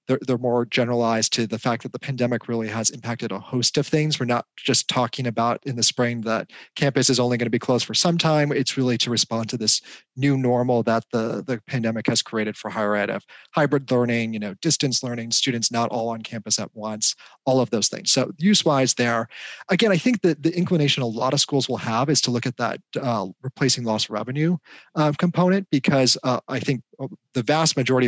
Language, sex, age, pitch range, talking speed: English, male, 30-49, 115-140 Hz, 215 wpm